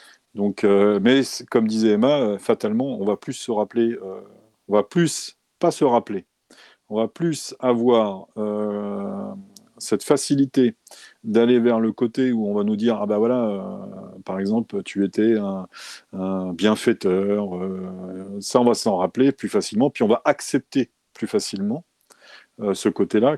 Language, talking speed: French, 160 wpm